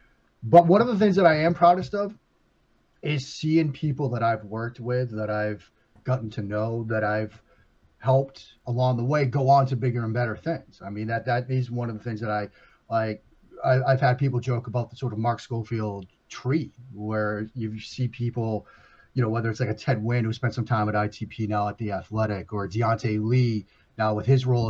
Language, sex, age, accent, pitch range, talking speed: English, male, 30-49, American, 110-135 Hz, 215 wpm